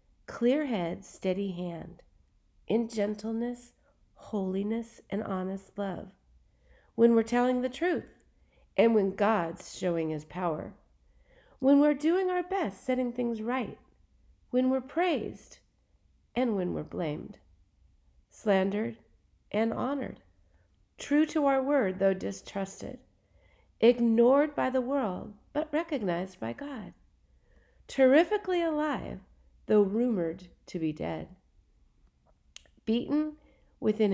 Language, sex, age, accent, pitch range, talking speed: English, female, 50-69, American, 190-280 Hz, 110 wpm